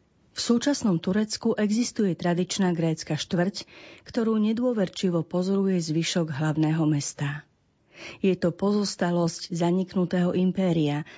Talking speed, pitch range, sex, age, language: 95 wpm, 165-195 Hz, female, 40-59, Slovak